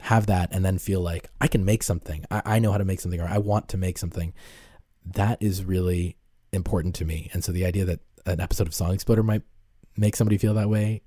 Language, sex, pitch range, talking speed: English, male, 85-105 Hz, 245 wpm